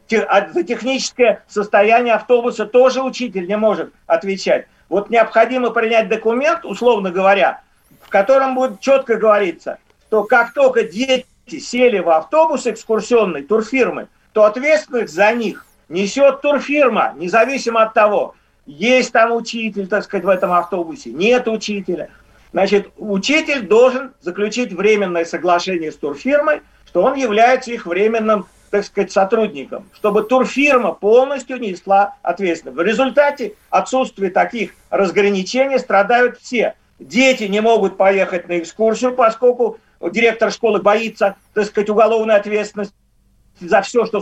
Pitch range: 200-245 Hz